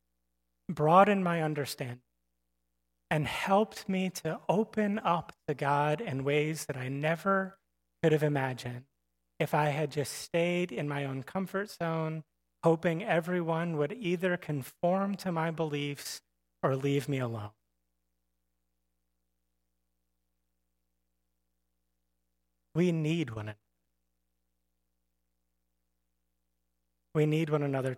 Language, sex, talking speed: English, male, 105 wpm